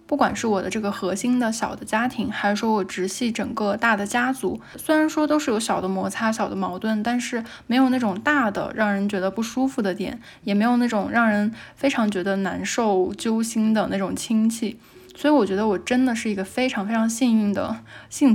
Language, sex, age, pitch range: Chinese, female, 10-29, 205-245 Hz